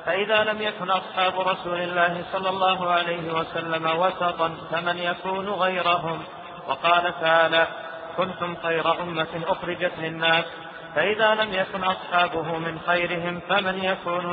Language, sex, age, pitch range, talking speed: Arabic, male, 50-69, 165-185 Hz, 120 wpm